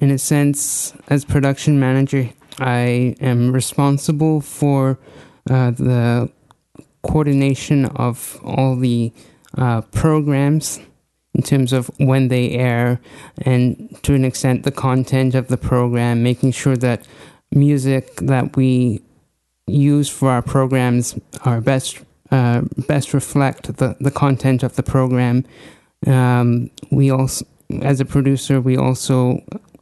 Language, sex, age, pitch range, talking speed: English, male, 20-39, 125-140 Hz, 125 wpm